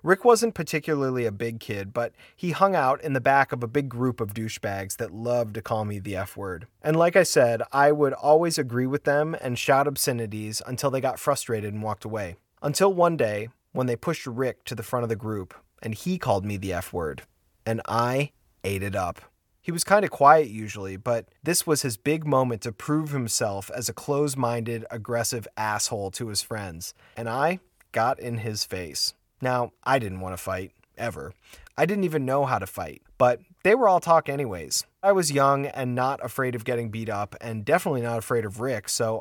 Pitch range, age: 110-150 Hz, 30-49